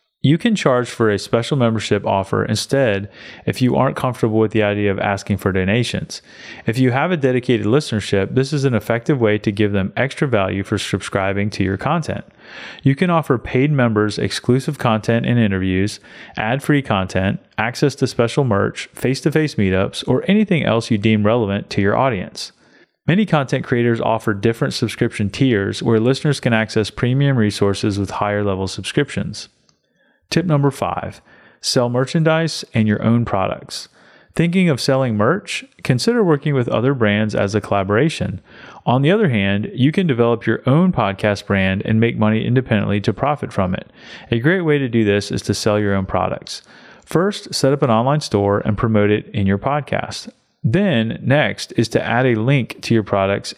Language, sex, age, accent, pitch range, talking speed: English, male, 30-49, American, 105-140 Hz, 175 wpm